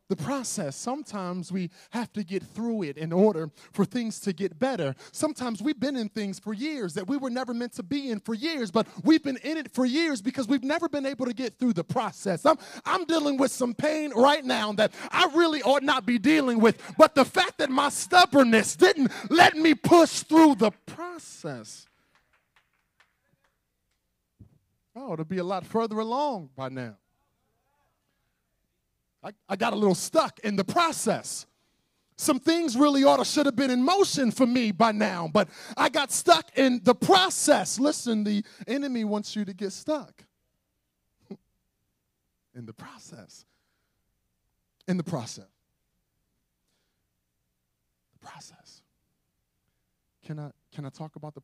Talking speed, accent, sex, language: 165 wpm, American, male, English